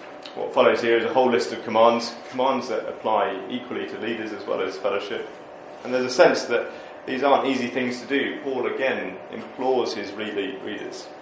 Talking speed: 185 wpm